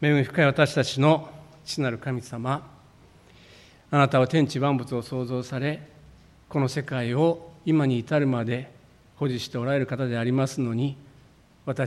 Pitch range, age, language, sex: 120-150 Hz, 50-69, Japanese, male